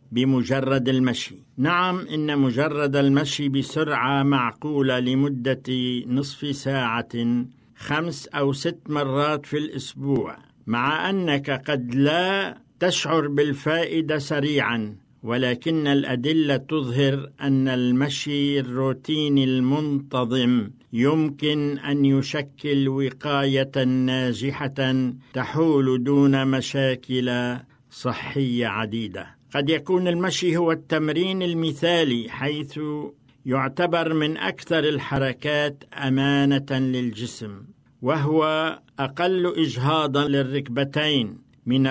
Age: 60-79